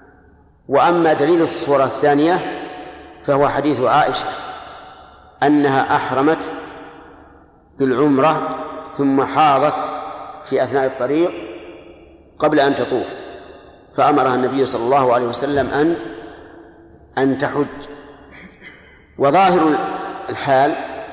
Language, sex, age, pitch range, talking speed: Arabic, male, 50-69, 135-155 Hz, 80 wpm